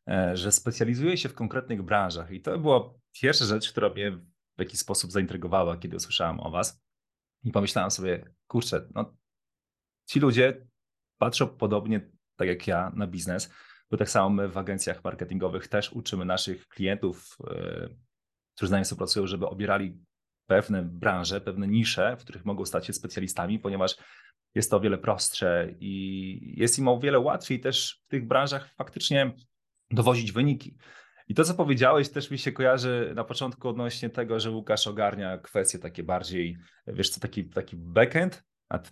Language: Polish